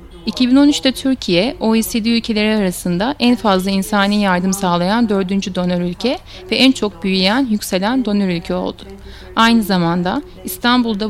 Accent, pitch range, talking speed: native, 190-230 Hz, 130 wpm